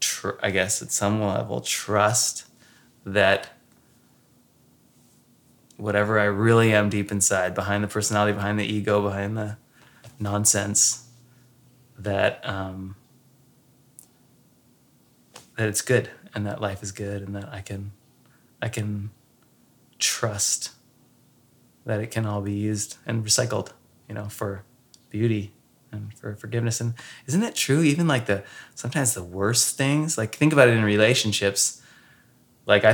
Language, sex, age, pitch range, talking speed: English, male, 20-39, 100-125 Hz, 135 wpm